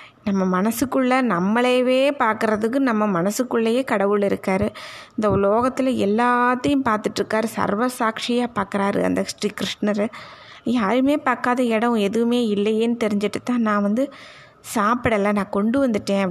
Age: 20-39